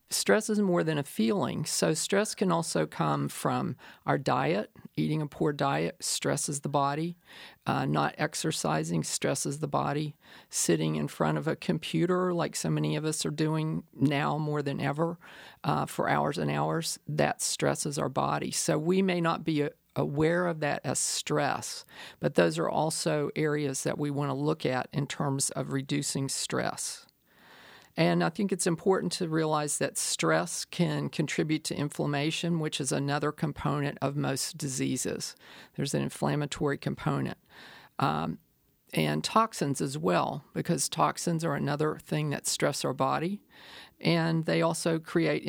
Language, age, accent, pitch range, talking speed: English, 40-59, American, 140-170 Hz, 160 wpm